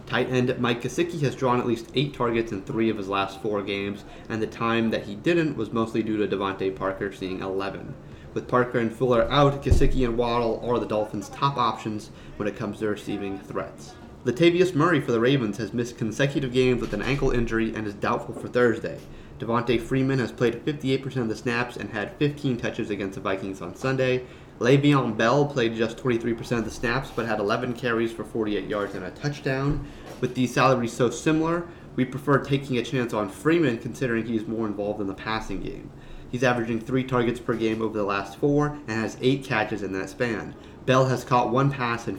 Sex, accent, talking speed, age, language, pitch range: male, American, 205 wpm, 30-49, English, 110-130 Hz